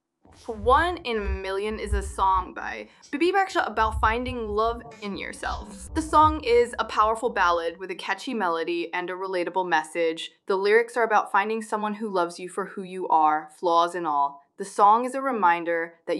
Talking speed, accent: 190 wpm, American